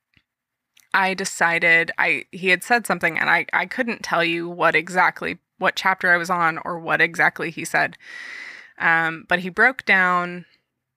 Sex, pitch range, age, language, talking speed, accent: female, 165-185 Hz, 20-39, English, 165 wpm, American